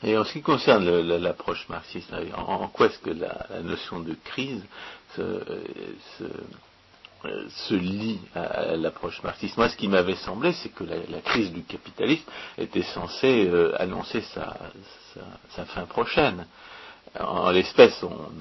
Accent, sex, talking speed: French, male, 165 wpm